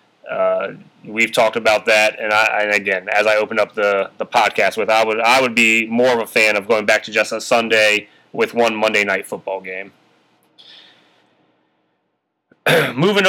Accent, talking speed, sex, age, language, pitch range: American, 180 wpm, male, 30-49, English, 110-145 Hz